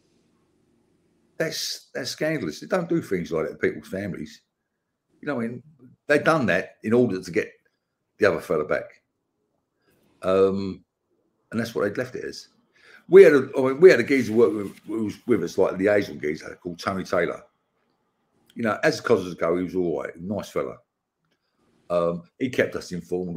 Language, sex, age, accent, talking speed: English, male, 50-69, British, 185 wpm